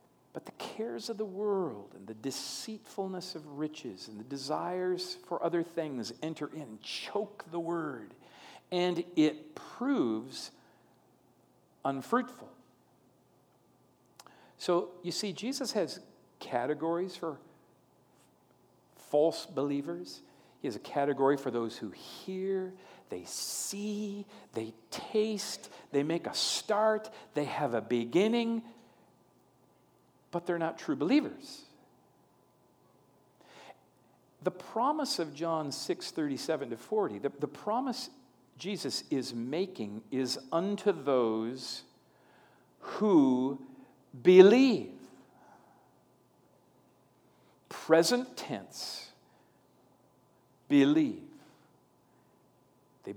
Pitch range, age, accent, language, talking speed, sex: 130-205 Hz, 50-69, American, English, 95 wpm, male